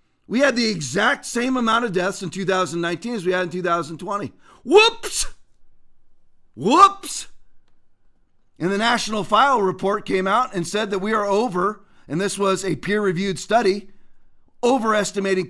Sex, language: male, English